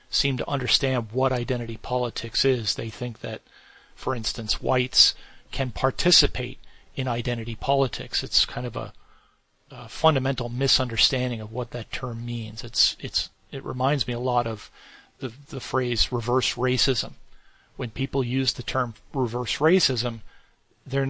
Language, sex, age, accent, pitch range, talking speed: English, male, 40-59, American, 120-135 Hz, 145 wpm